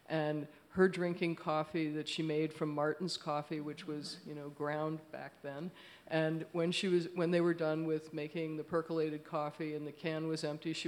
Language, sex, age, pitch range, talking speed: English, female, 50-69, 150-170 Hz, 200 wpm